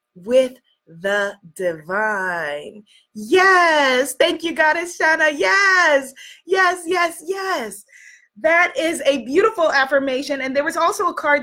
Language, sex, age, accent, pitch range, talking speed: English, female, 20-39, American, 205-325 Hz, 120 wpm